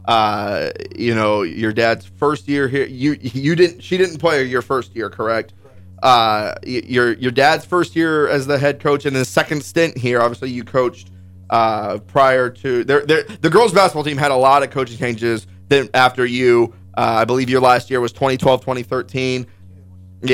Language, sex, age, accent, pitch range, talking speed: English, male, 30-49, American, 120-145 Hz, 185 wpm